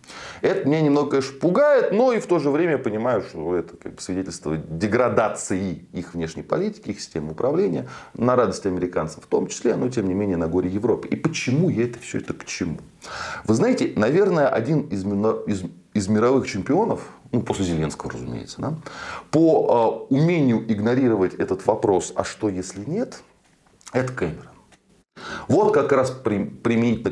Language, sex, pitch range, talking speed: Russian, male, 95-155 Hz, 155 wpm